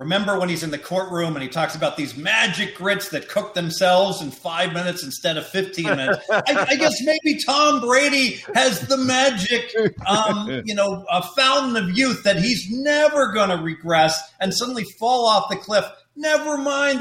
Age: 40-59